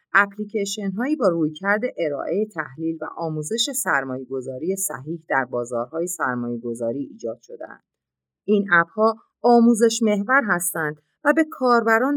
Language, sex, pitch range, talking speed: Persian, female, 145-215 Hz, 110 wpm